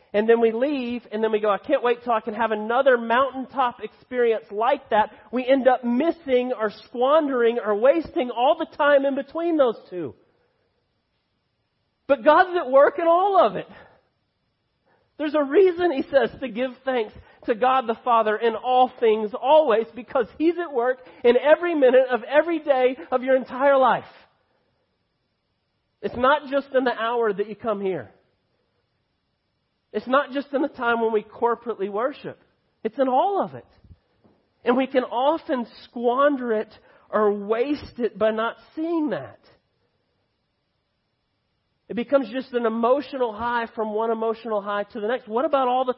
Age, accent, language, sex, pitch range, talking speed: 40-59, American, English, male, 230-295 Hz, 165 wpm